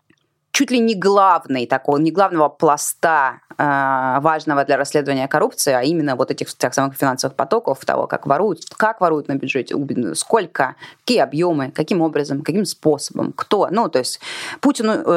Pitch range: 145-200 Hz